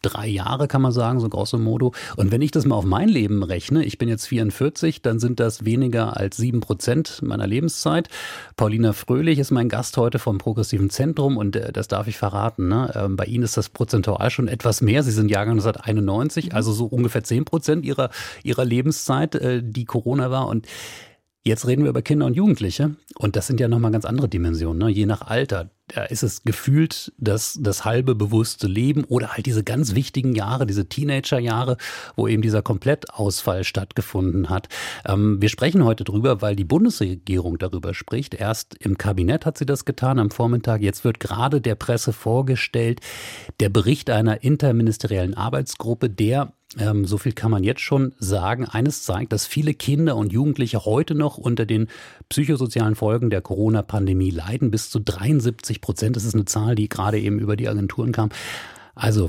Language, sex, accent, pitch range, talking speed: German, male, German, 105-130 Hz, 185 wpm